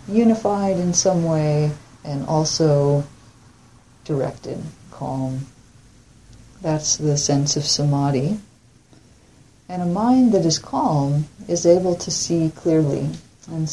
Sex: female